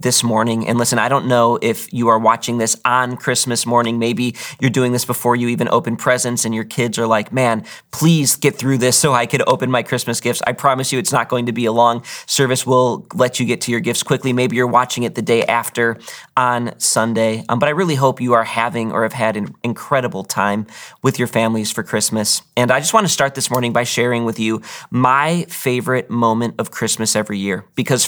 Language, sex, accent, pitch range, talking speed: English, male, American, 115-135 Hz, 230 wpm